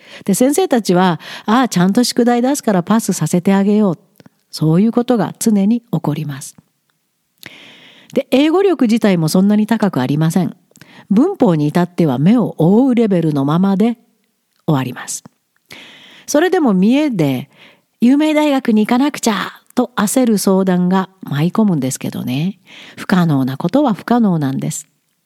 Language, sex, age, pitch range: Japanese, female, 50-69, 180-250 Hz